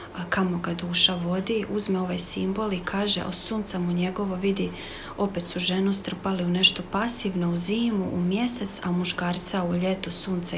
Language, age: Croatian, 40-59